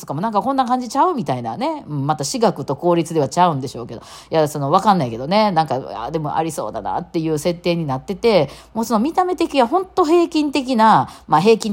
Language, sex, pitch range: Japanese, female, 140-220 Hz